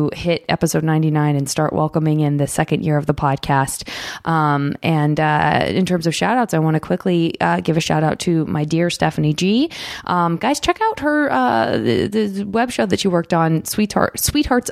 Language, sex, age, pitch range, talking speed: English, female, 20-39, 155-185 Hz, 210 wpm